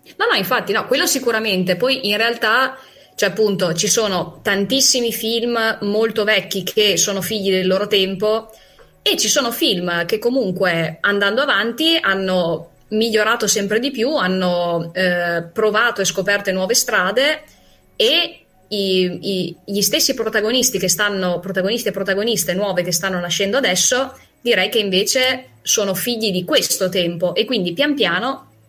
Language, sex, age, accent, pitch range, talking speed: Italian, female, 20-39, native, 190-255 Hz, 150 wpm